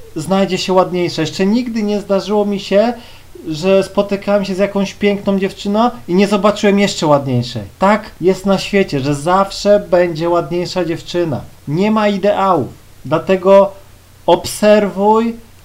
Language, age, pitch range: Polish, 40-59, 170-225 Hz